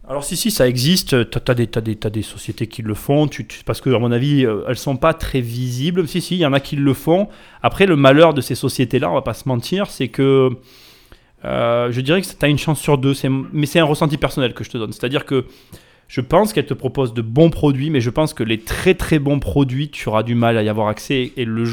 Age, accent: 20-39, French